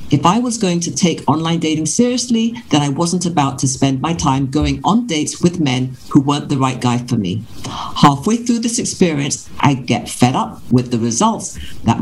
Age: 50-69